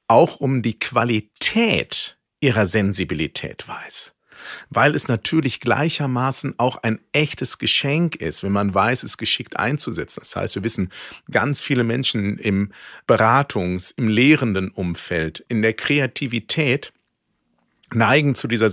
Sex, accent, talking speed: male, German, 130 wpm